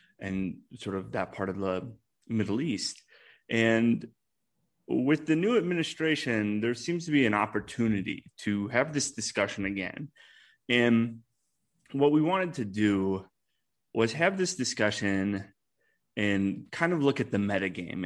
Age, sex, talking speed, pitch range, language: 30-49, male, 140 wpm, 100-125 Hz, English